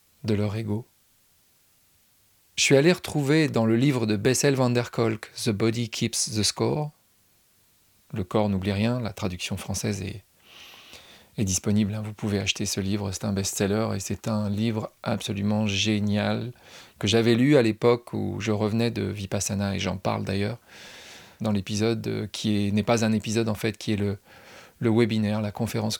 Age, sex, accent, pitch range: 40-59, male, French, 100-120 Hz